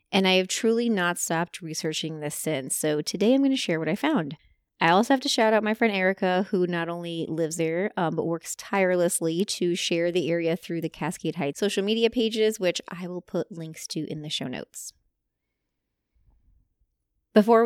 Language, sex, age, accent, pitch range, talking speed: English, female, 30-49, American, 165-215 Hz, 195 wpm